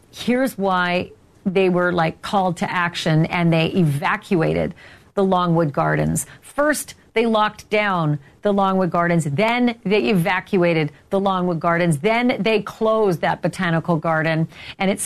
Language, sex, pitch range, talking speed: English, female, 170-220 Hz, 140 wpm